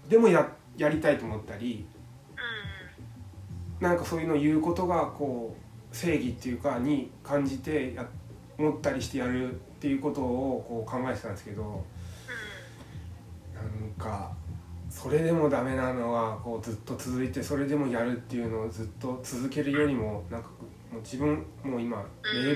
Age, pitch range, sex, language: 20-39, 100-140 Hz, male, Japanese